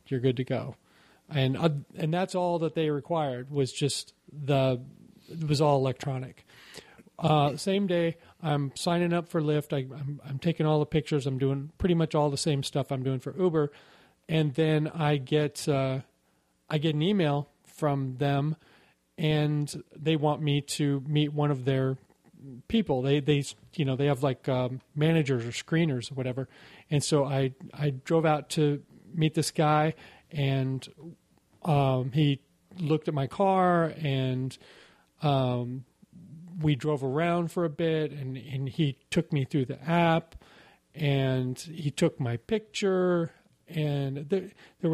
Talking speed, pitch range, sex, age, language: 160 wpm, 135-165 Hz, male, 40-59, English